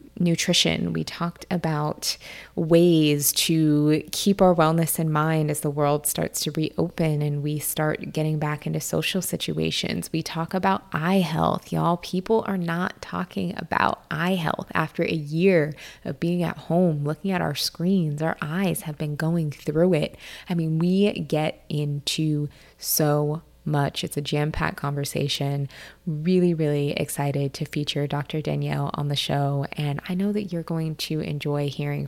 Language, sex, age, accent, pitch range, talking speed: English, female, 20-39, American, 150-180 Hz, 160 wpm